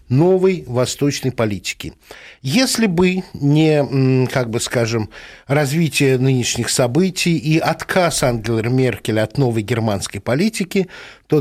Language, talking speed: Russian, 110 wpm